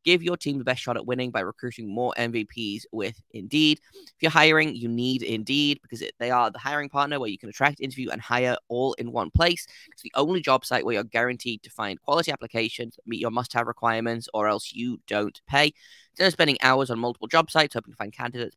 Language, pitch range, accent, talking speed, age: English, 115-145 Hz, British, 235 wpm, 10-29